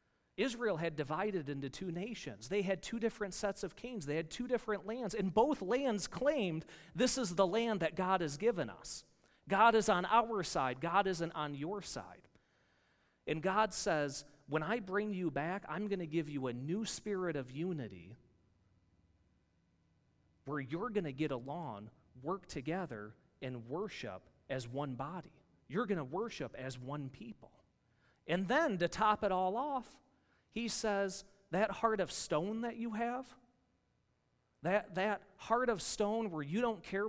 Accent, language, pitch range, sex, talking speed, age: American, English, 150-210 Hz, male, 170 wpm, 40-59